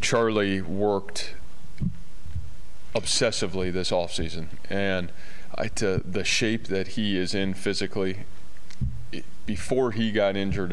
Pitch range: 85-100 Hz